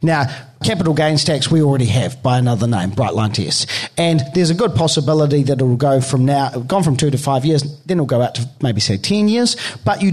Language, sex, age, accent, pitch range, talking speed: English, male, 40-59, Australian, 130-165 Hz, 235 wpm